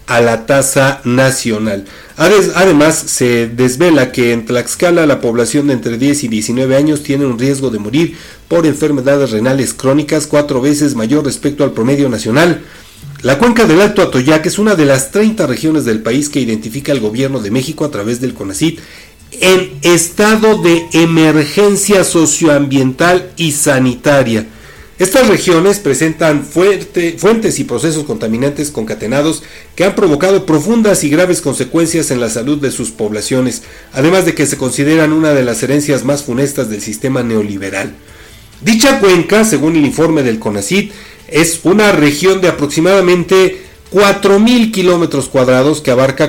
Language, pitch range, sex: Spanish, 130-170 Hz, male